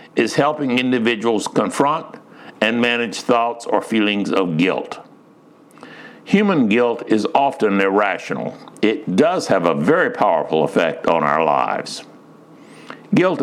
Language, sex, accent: English, male, American